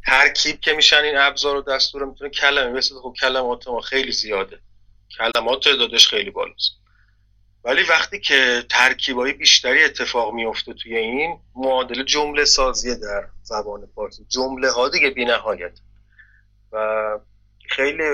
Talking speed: 130 wpm